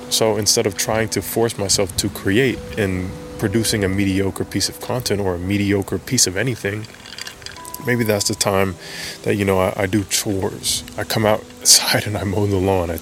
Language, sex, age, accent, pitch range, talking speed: English, male, 20-39, American, 95-115 Hz, 195 wpm